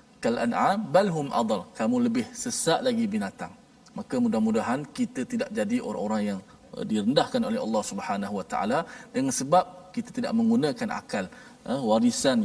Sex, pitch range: male, 205-250 Hz